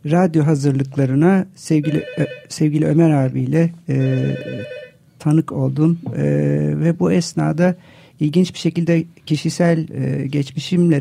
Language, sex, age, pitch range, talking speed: Turkish, male, 50-69, 135-160 Hz, 105 wpm